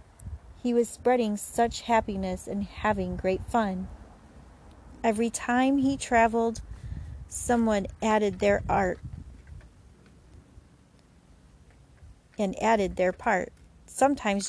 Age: 40-59